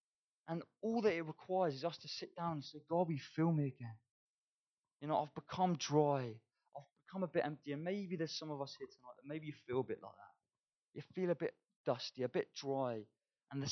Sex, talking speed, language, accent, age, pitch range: male, 230 wpm, English, British, 20-39, 120-160 Hz